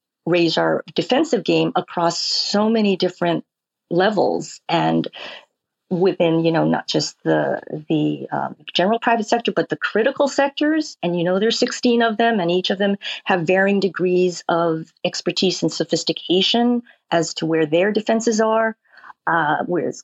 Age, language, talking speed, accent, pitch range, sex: 40-59, English, 155 wpm, American, 170-230 Hz, female